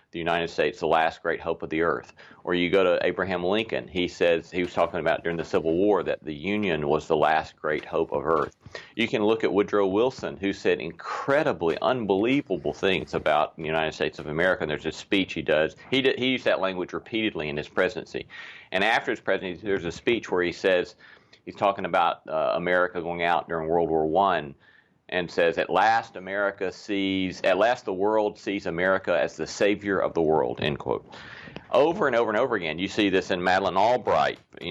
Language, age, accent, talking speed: English, 40-59, American, 215 wpm